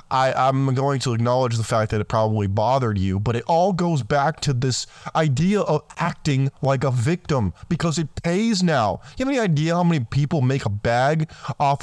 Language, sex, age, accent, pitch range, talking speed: English, male, 20-39, American, 125-160 Hz, 200 wpm